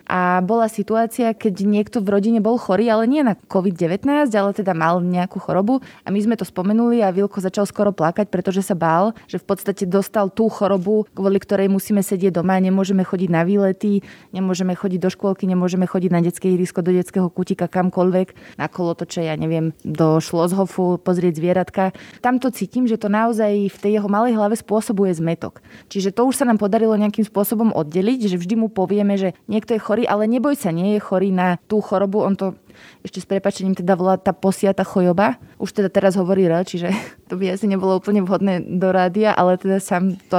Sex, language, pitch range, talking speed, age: female, Slovak, 185-225 Hz, 200 wpm, 20-39